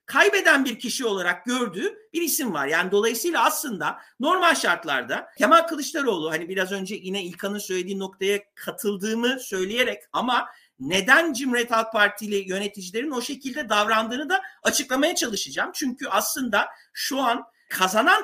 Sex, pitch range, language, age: male, 225-300 Hz, Turkish, 50-69